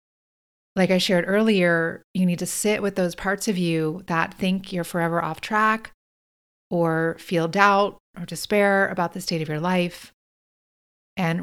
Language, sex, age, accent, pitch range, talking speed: English, female, 30-49, American, 165-200 Hz, 165 wpm